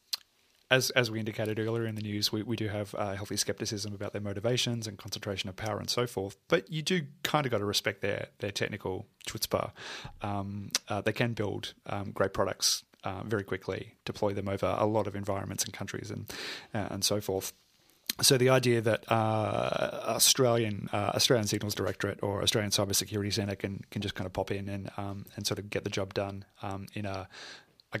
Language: English